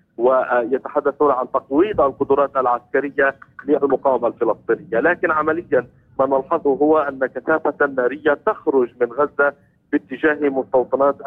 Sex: male